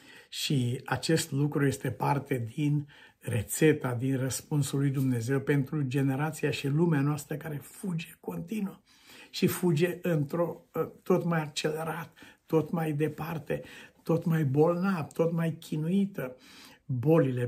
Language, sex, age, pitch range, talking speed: Romanian, male, 60-79, 135-170 Hz, 120 wpm